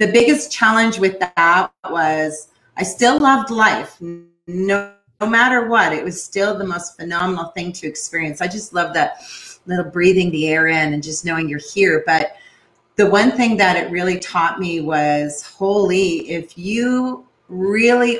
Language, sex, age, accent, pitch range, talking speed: English, female, 30-49, American, 170-230 Hz, 170 wpm